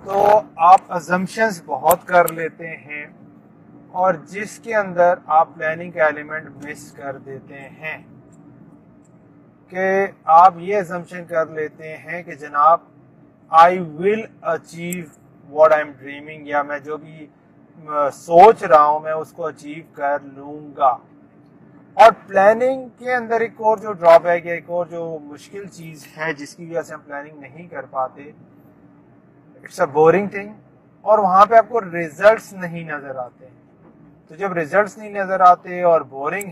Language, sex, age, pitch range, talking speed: English, male, 40-59, 150-185 Hz, 150 wpm